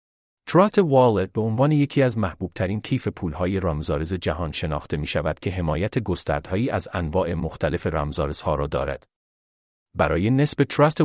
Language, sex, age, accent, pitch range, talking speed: English, male, 40-59, Canadian, 80-115 Hz, 145 wpm